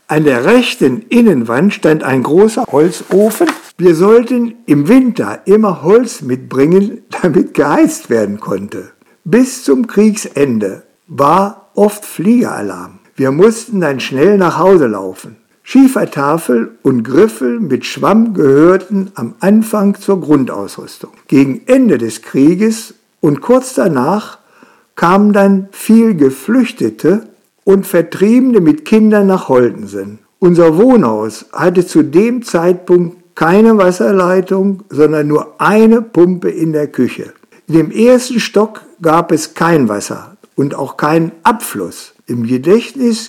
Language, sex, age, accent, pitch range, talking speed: German, male, 60-79, German, 155-220 Hz, 120 wpm